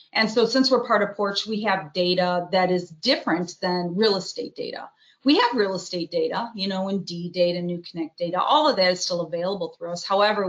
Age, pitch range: 40-59, 180-220 Hz